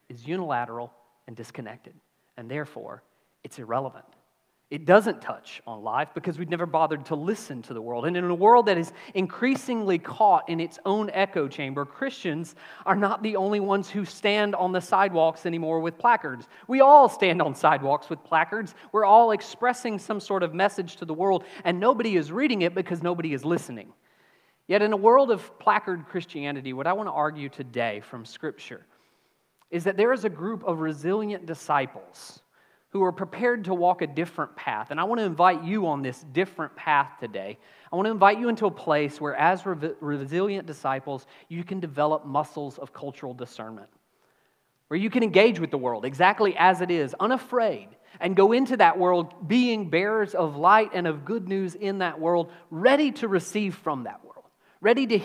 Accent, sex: American, male